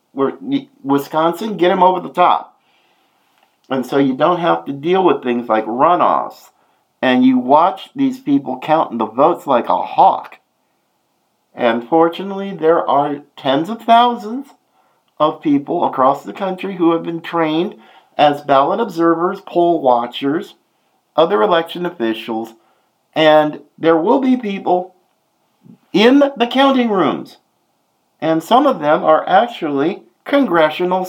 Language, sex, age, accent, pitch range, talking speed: English, male, 50-69, American, 150-235 Hz, 130 wpm